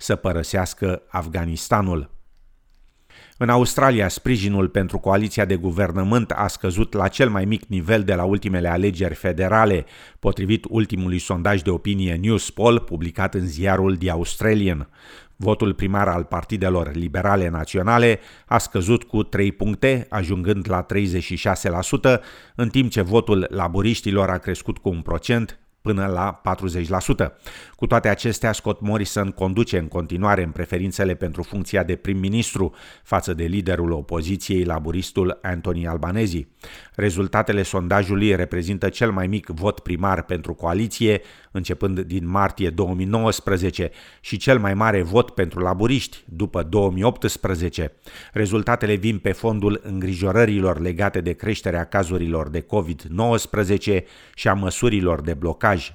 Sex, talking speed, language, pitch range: male, 130 wpm, Romanian, 90-105 Hz